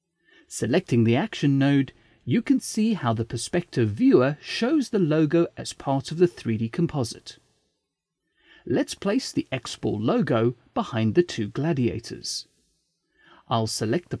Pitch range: 115-175 Hz